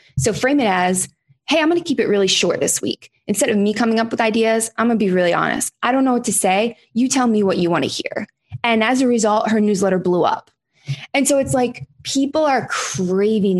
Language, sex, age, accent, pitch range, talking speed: English, female, 20-39, American, 185-250 Hz, 245 wpm